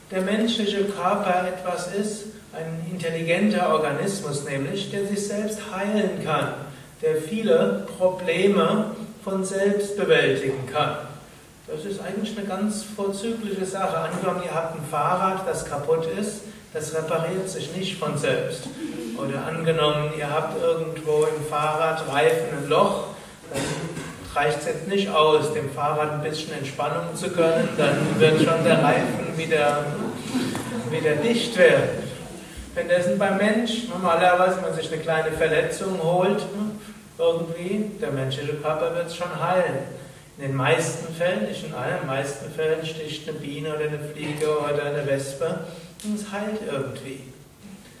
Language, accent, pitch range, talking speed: German, German, 150-195 Hz, 150 wpm